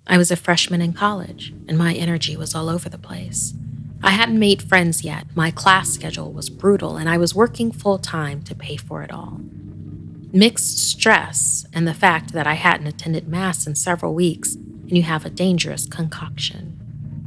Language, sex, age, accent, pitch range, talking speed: English, female, 30-49, American, 150-185 Hz, 190 wpm